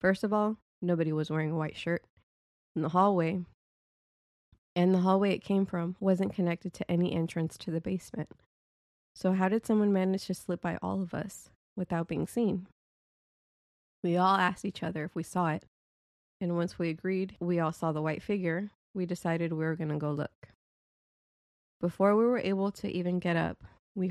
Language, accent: English, American